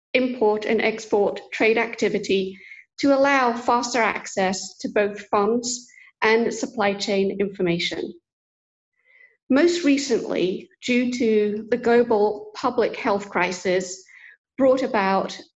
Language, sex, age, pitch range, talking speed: English, female, 50-69, 200-255 Hz, 105 wpm